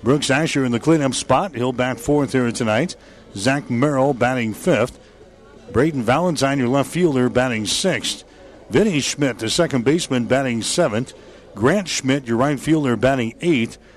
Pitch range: 115-135 Hz